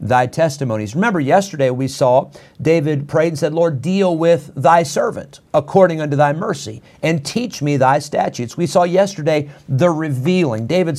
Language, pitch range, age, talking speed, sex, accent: English, 130-165 Hz, 50-69, 165 wpm, male, American